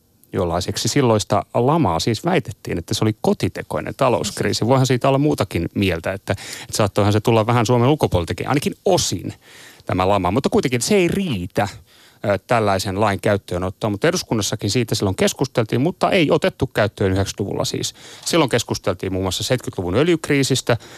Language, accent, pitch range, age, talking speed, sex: Finnish, native, 100-135 Hz, 30-49, 155 wpm, male